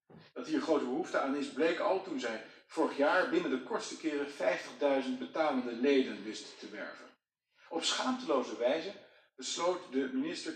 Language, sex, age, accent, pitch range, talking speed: Dutch, male, 50-69, Dutch, 130-215 Hz, 160 wpm